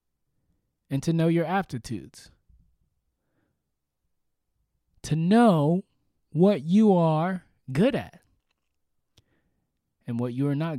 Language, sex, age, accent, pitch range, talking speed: English, male, 20-39, American, 120-195 Hz, 95 wpm